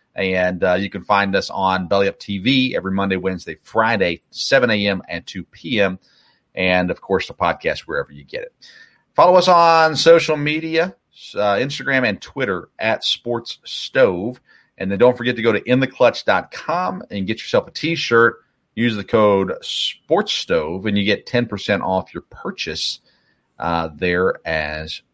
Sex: male